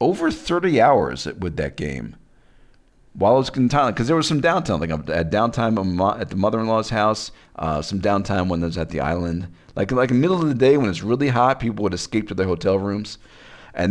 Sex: male